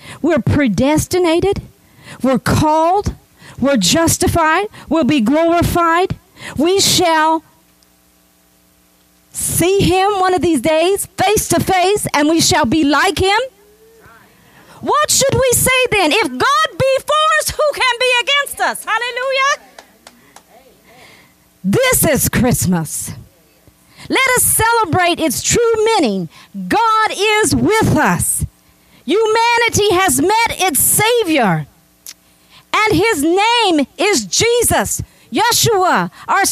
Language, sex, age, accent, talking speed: English, female, 40-59, American, 110 wpm